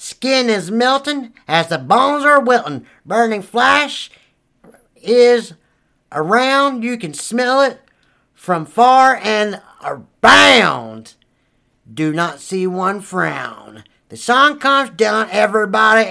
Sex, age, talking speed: male, 40-59, 110 wpm